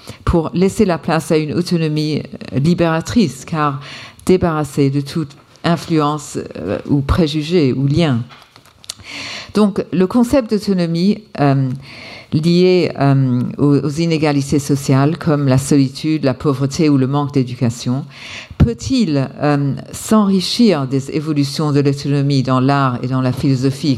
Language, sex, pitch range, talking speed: French, female, 140-180 Hz, 130 wpm